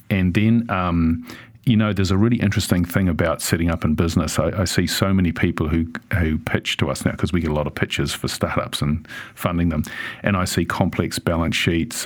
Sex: male